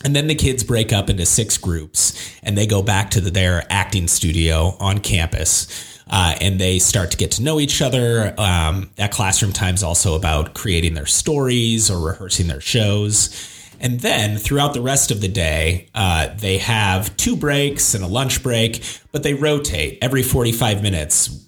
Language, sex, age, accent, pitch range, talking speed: English, male, 30-49, American, 90-115 Hz, 180 wpm